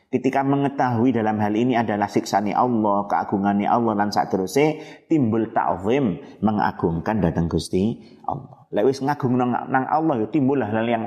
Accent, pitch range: native, 95-125 Hz